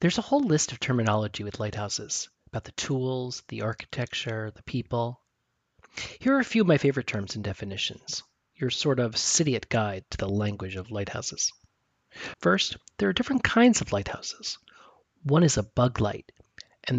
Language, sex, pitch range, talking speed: English, male, 105-135 Hz, 175 wpm